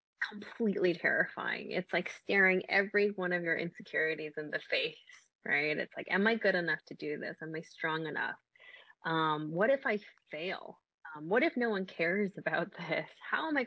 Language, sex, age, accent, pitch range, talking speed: English, female, 20-39, American, 160-205 Hz, 190 wpm